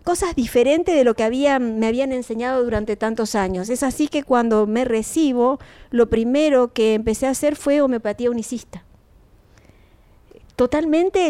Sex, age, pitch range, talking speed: female, 40-59, 220-280 Hz, 145 wpm